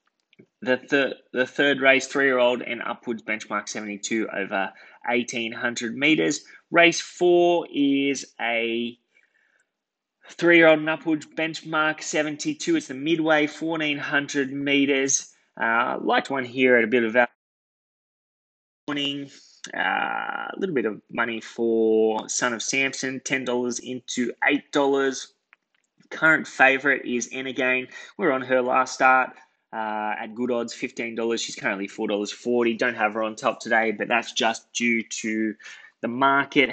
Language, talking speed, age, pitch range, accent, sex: English, 130 wpm, 20-39, 115-140 Hz, Australian, male